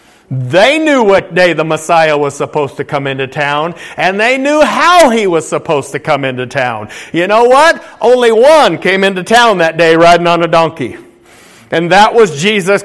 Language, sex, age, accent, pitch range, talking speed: English, male, 50-69, American, 165-230 Hz, 190 wpm